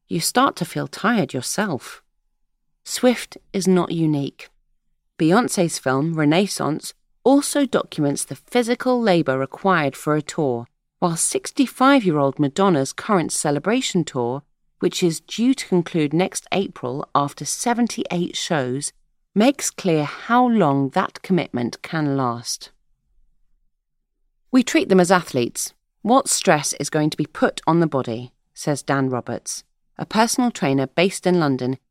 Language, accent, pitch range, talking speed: English, British, 135-190 Hz, 130 wpm